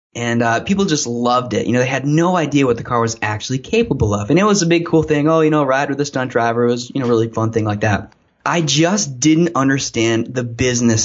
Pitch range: 115-155 Hz